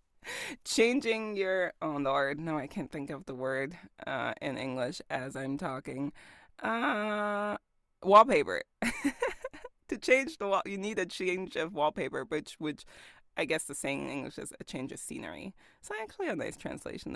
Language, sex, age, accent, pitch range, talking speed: English, female, 20-39, American, 155-240 Hz, 170 wpm